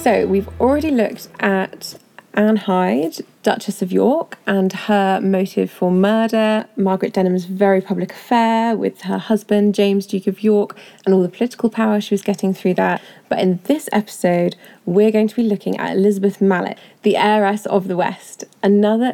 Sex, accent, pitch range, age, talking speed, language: female, British, 190-220 Hz, 20-39, 170 wpm, English